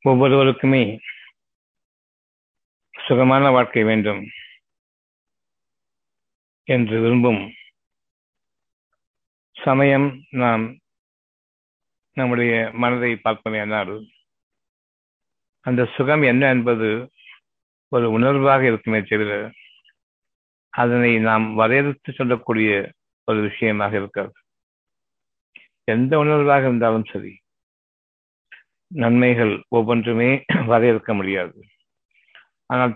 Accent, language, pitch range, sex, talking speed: native, Tamil, 110-135 Hz, male, 65 wpm